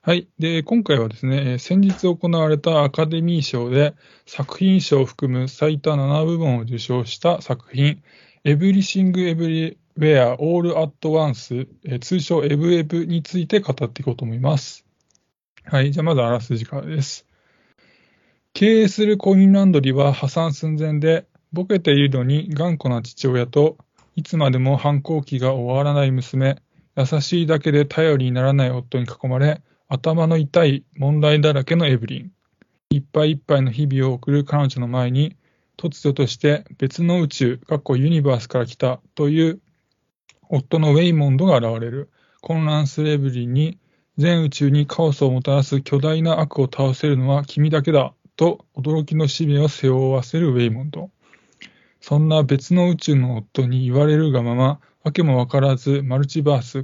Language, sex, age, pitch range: Japanese, male, 20-39, 135-160 Hz